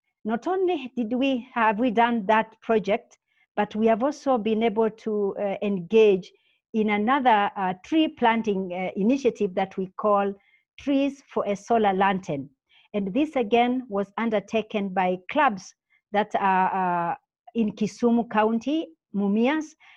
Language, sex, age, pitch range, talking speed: English, female, 50-69, 195-240 Hz, 140 wpm